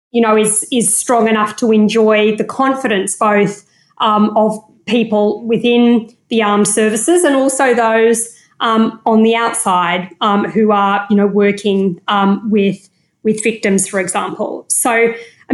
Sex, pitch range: female, 205-240 Hz